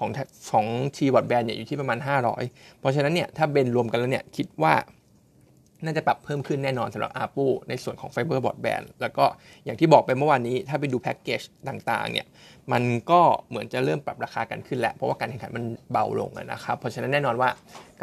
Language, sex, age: Thai, male, 20-39